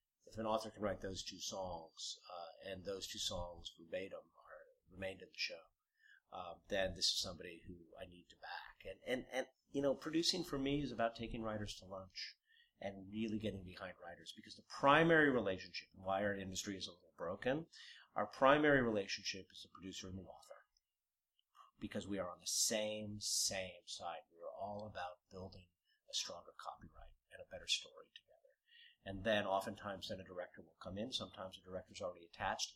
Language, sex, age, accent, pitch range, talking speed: English, male, 50-69, American, 95-135 Hz, 190 wpm